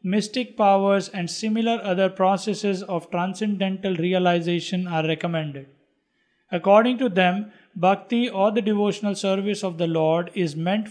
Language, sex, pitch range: English, male, 175-210 Hz